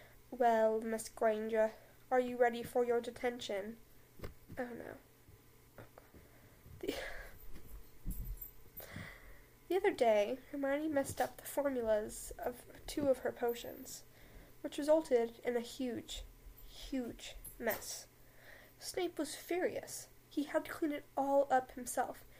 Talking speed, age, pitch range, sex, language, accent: 115 wpm, 10-29, 235-280 Hz, female, English, American